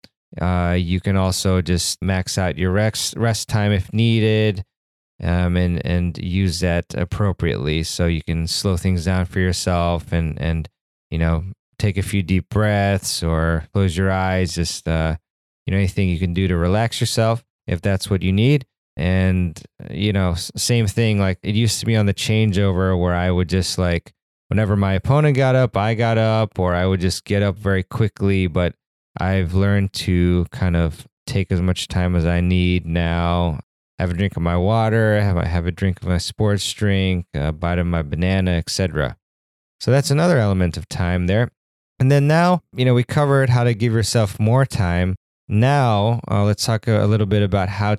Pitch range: 90-110 Hz